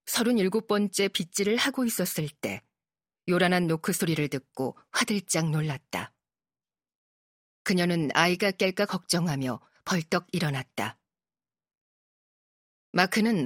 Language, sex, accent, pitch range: Korean, female, native, 150-200 Hz